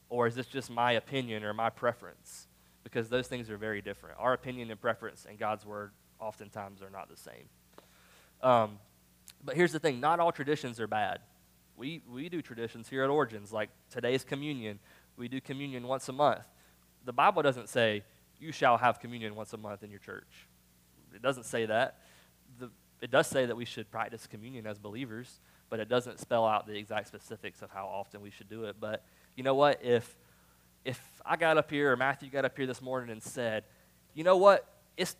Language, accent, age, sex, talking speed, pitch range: English, American, 20-39, male, 205 wpm, 105-135 Hz